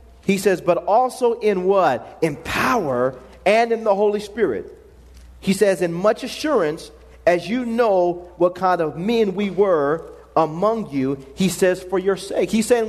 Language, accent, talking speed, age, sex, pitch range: English, American, 170 wpm, 40-59, male, 185-250 Hz